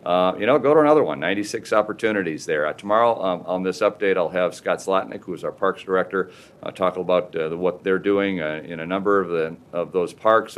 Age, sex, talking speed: 50-69, male, 225 wpm